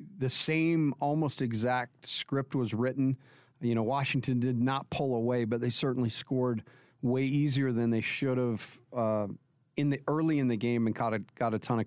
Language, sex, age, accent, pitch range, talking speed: English, male, 40-59, American, 120-135 Hz, 190 wpm